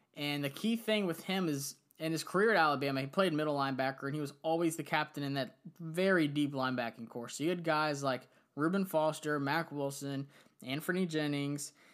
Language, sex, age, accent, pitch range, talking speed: English, male, 20-39, American, 135-160 Hz, 195 wpm